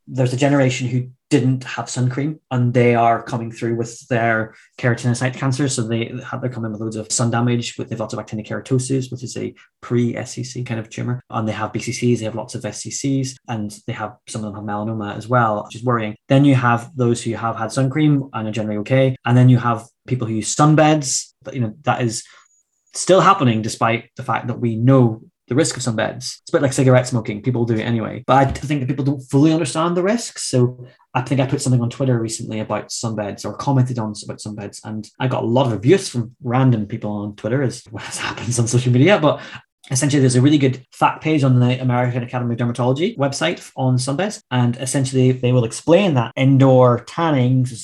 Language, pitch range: English, 115-135 Hz